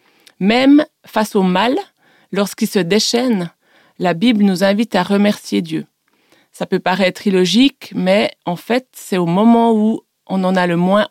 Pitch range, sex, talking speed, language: 180-220 Hz, female, 160 wpm, French